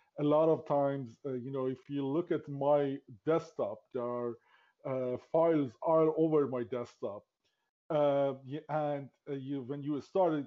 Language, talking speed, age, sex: English, 155 wpm, 30-49, male